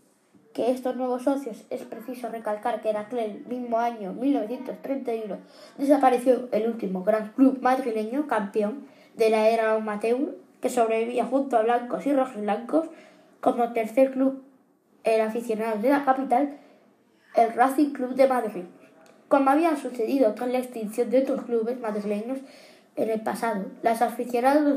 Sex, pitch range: female, 225-285 Hz